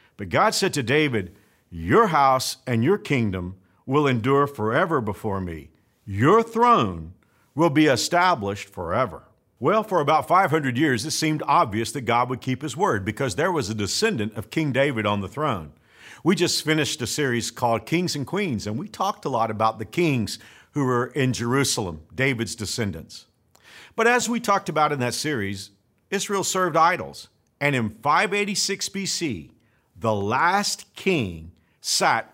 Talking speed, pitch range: 165 wpm, 110-160 Hz